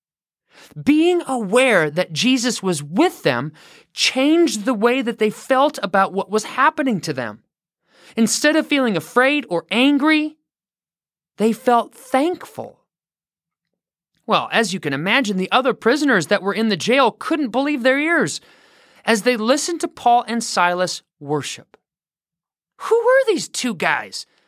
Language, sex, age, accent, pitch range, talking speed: English, male, 30-49, American, 195-285 Hz, 140 wpm